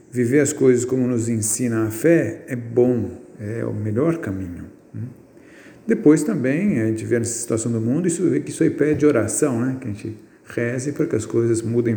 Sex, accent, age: male, Brazilian, 50-69